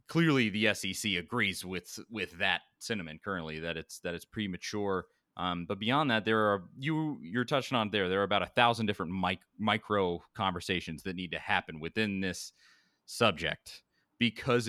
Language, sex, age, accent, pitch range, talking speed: English, male, 30-49, American, 90-120 Hz, 170 wpm